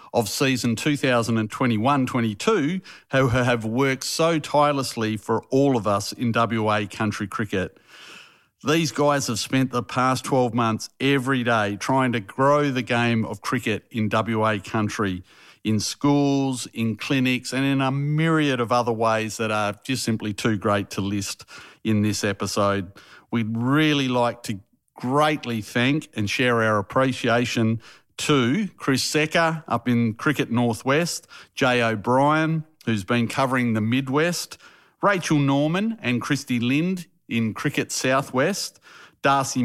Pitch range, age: 110-140 Hz, 50-69